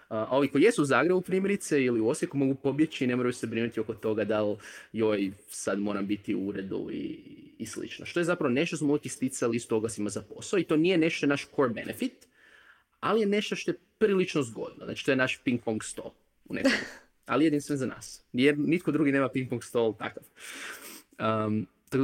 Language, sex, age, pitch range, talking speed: Croatian, male, 30-49, 110-140 Hz, 210 wpm